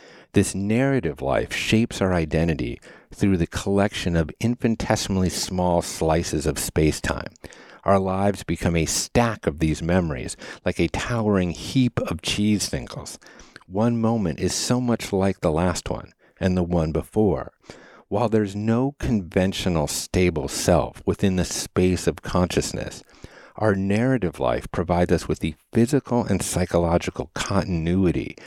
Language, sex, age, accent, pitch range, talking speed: English, male, 50-69, American, 85-105 Hz, 135 wpm